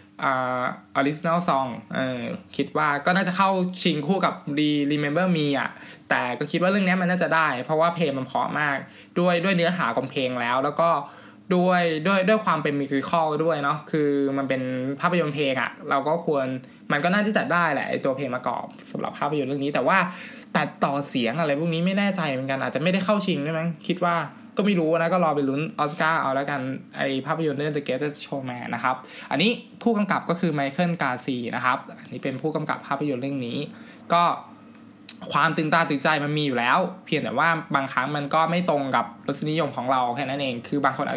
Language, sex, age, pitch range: Thai, male, 20-39, 135-175 Hz